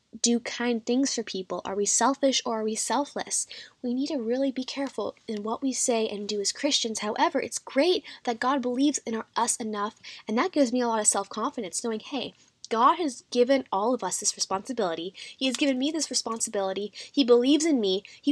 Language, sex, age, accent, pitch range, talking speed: English, female, 10-29, American, 205-255 Hz, 215 wpm